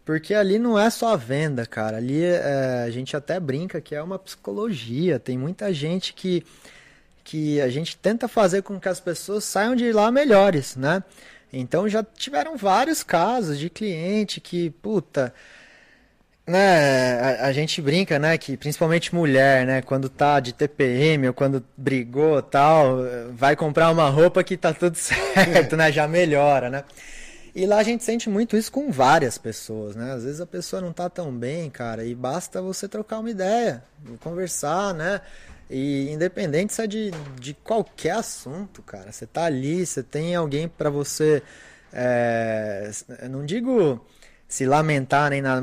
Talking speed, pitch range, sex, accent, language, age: 165 wpm, 135-190 Hz, male, Brazilian, Portuguese, 20-39